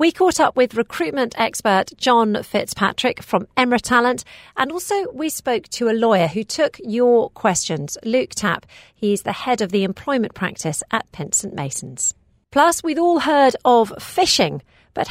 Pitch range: 190-275 Hz